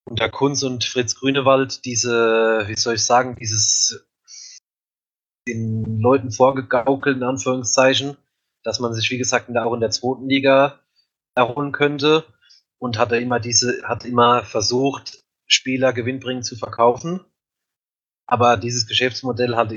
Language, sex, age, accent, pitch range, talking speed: German, male, 30-49, German, 115-130 Hz, 135 wpm